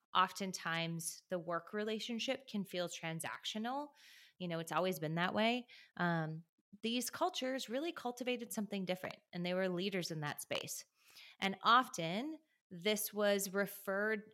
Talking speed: 140 wpm